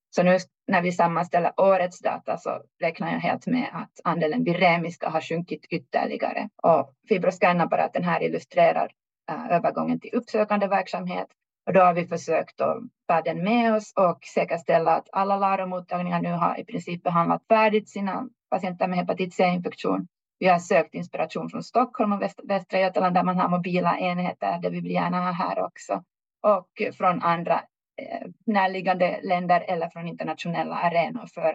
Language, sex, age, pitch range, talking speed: Swedish, female, 30-49, 170-200 Hz, 160 wpm